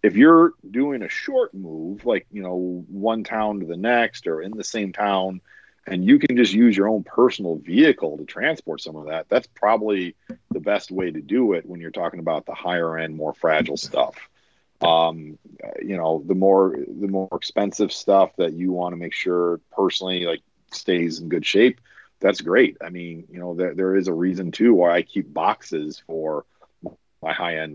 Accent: American